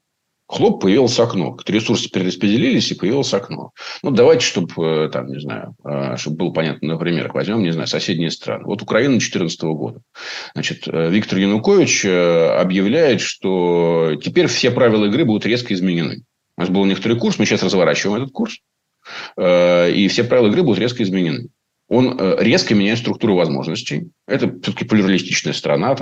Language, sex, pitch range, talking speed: Russian, male, 80-105 Hz, 150 wpm